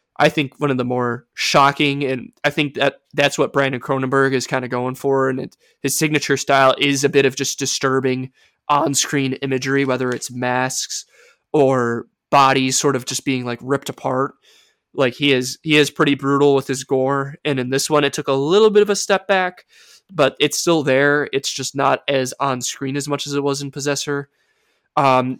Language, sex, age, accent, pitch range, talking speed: English, male, 20-39, American, 130-150 Hz, 200 wpm